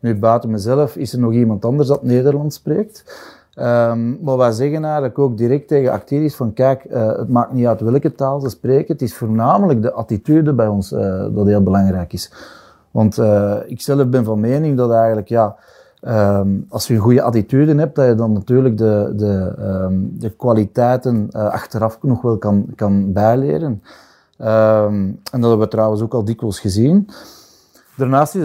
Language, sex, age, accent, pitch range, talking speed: Dutch, male, 30-49, Dutch, 110-135 Hz, 185 wpm